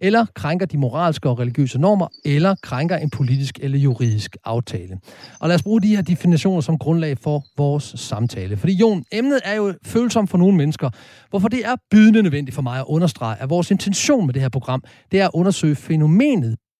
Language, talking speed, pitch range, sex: Danish, 200 wpm, 135-200 Hz, male